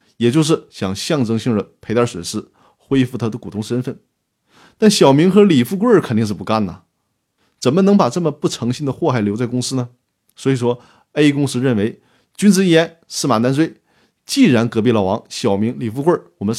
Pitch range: 110-155 Hz